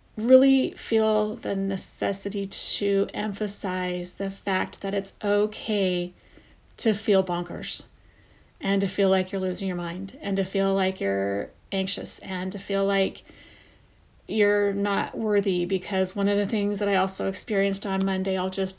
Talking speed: 155 wpm